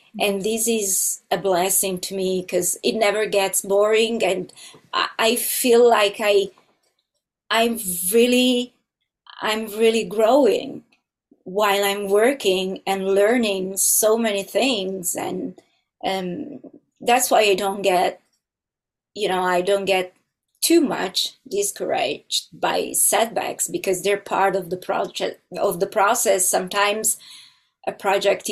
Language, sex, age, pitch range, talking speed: English, female, 20-39, 190-225 Hz, 125 wpm